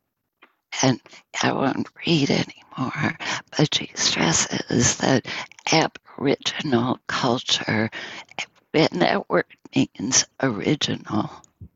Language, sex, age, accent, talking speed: English, female, 60-79, American, 80 wpm